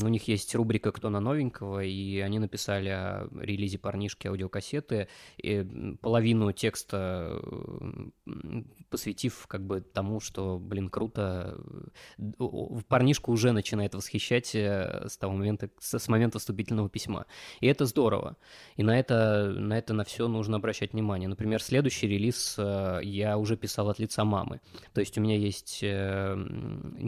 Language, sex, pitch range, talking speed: Russian, male, 100-120 Hz, 135 wpm